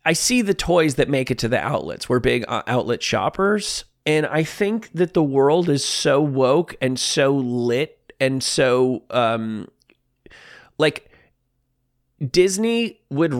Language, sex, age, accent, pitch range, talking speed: English, male, 30-49, American, 125-165 Hz, 145 wpm